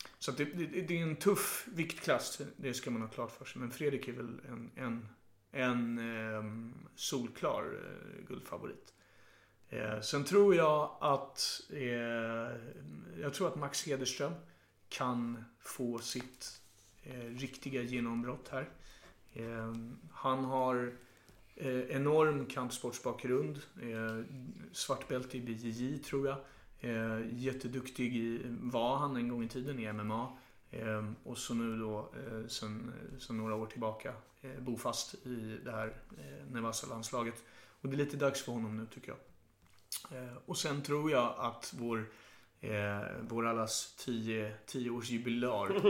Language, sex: Swedish, male